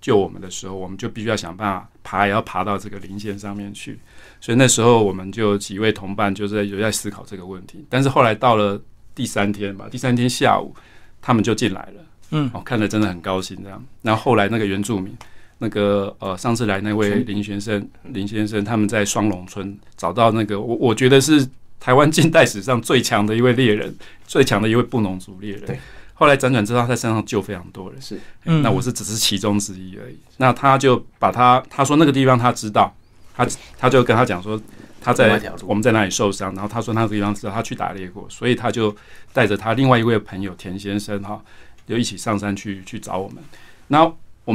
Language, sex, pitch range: Chinese, male, 100-125 Hz